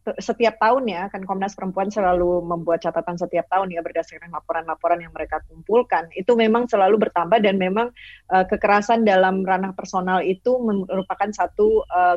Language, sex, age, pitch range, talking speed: Indonesian, female, 20-39, 175-210 Hz, 160 wpm